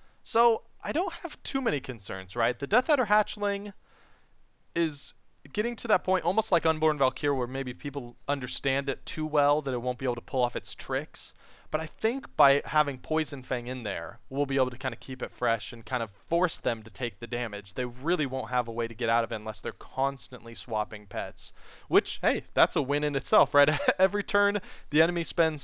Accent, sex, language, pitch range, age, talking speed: American, male, English, 125-175 Hz, 20-39, 220 wpm